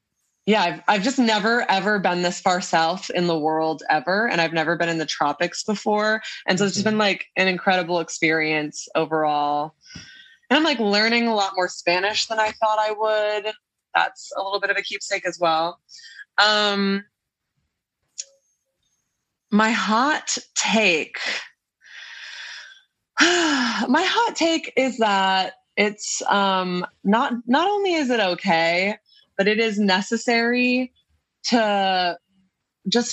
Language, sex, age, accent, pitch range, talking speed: English, female, 20-39, American, 175-230 Hz, 140 wpm